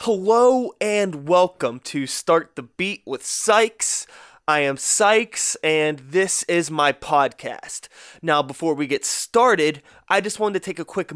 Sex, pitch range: male, 155-225 Hz